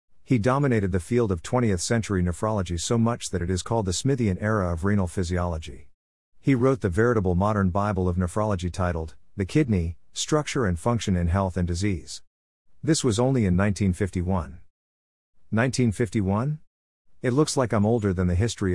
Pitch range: 90-115 Hz